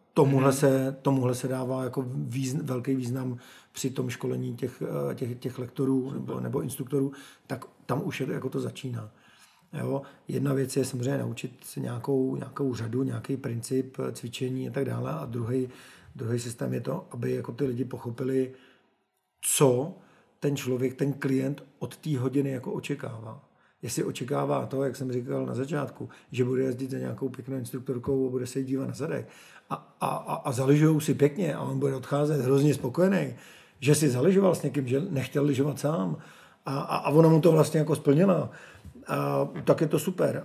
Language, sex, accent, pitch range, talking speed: Czech, male, native, 130-145 Hz, 180 wpm